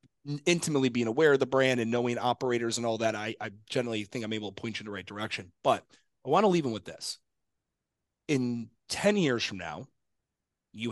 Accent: American